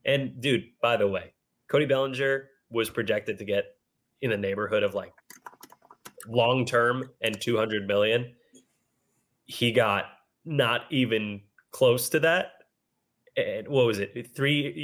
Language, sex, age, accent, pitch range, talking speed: English, male, 20-39, American, 120-190 Hz, 135 wpm